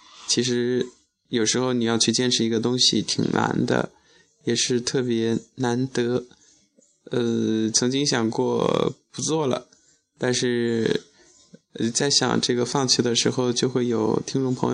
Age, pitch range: 20-39, 115-130 Hz